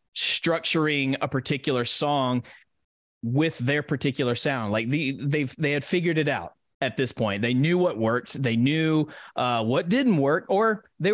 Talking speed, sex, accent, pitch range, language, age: 165 wpm, male, American, 120-155 Hz, English, 20-39